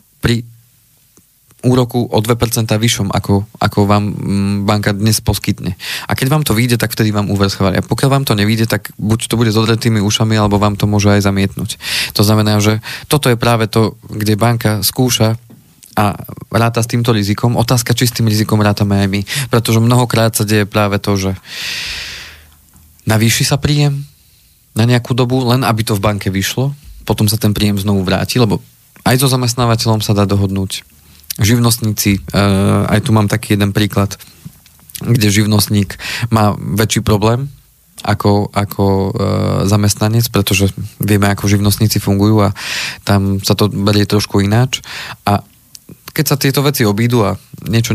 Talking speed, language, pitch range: 160 wpm, Slovak, 100-120 Hz